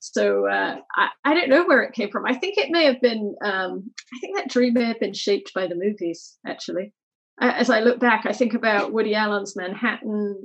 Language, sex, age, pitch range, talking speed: English, female, 30-49, 195-245 Hz, 225 wpm